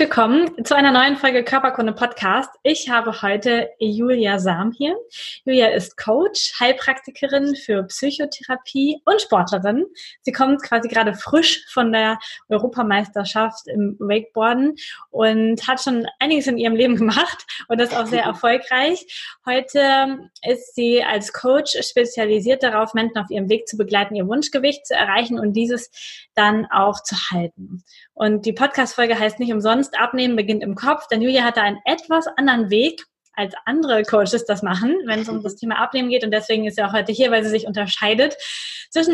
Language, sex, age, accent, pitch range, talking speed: German, female, 20-39, German, 220-270 Hz, 165 wpm